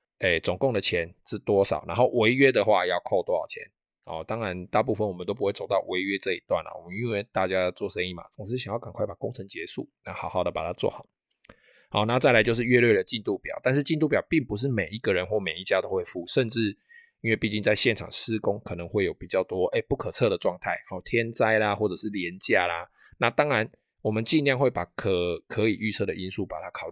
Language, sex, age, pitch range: Chinese, male, 20-39, 95-125 Hz